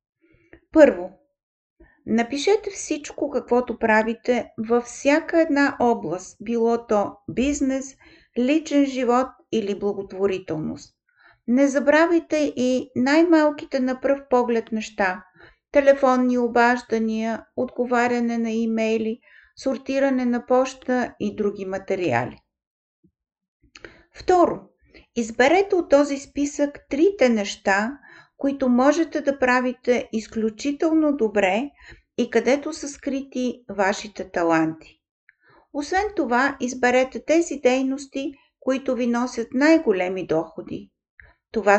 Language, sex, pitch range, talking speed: Bulgarian, female, 220-285 Hz, 95 wpm